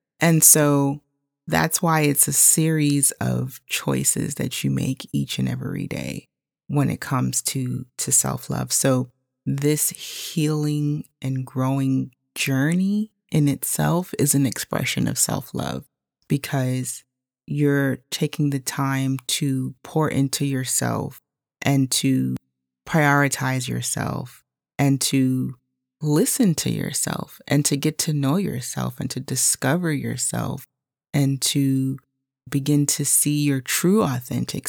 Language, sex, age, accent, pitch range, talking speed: English, female, 30-49, American, 130-150 Hz, 125 wpm